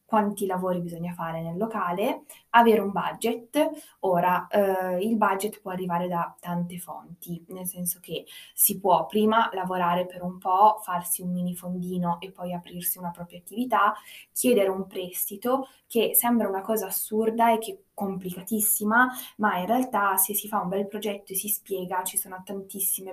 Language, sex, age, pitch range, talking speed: Italian, female, 20-39, 175-205 Hz, 165 wpm